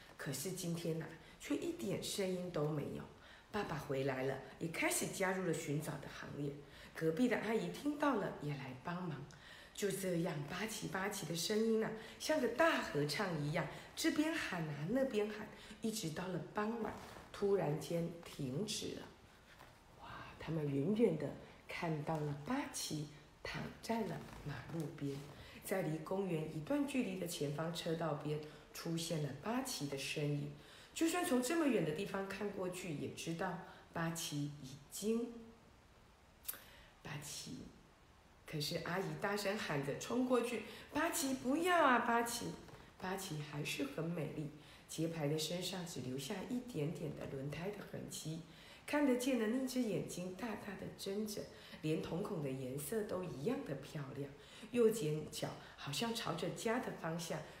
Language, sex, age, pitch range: Chinese, female, 50-69, 150-220 Hz